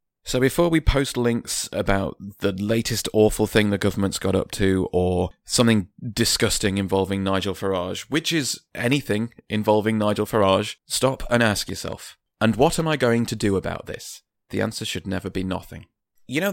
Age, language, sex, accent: 30-49, English, male, British